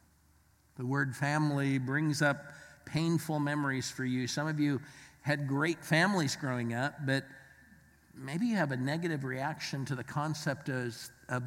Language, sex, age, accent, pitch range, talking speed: English, male, 50-69, American, 125-155 Hz, 145 wpm